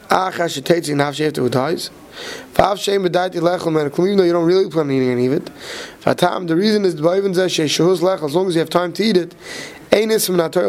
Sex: male